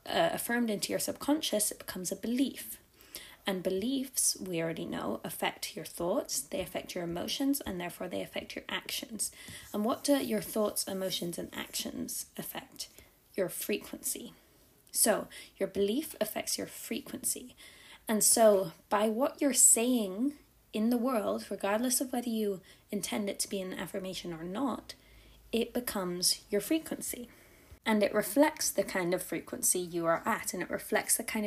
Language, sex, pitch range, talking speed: English, female, 200-255 Hz, 160 wpm